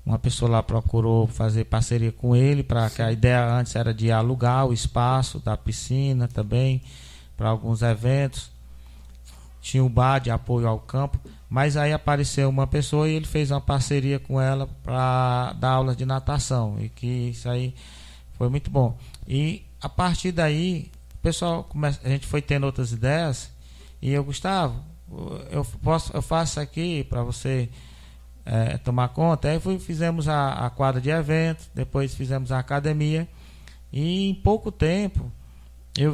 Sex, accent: male, Brazilian